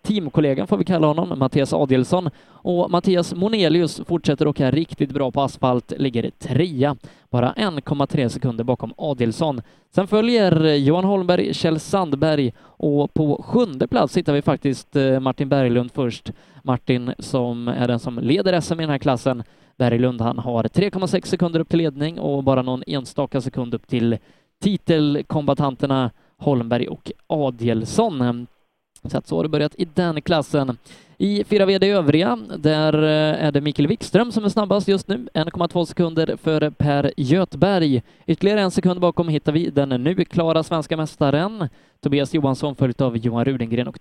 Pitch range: 135-180 Hz